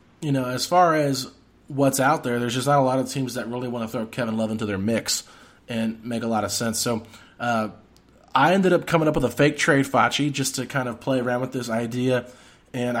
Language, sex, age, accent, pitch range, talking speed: English, male, 30-49, American, 115-145 Hz, 245 wpm